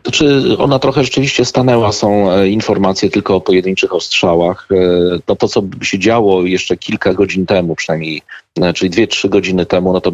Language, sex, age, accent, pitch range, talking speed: Polish, male, 40-59, native, 85-95 Hz, 190 wpm